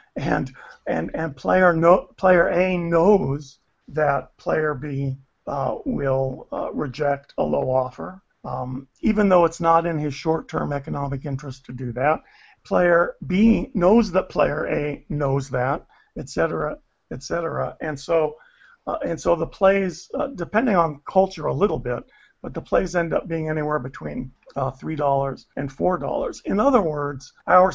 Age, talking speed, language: 50-69, 160 wpm, English